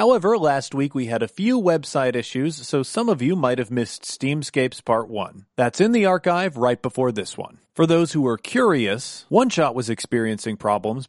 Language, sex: English, male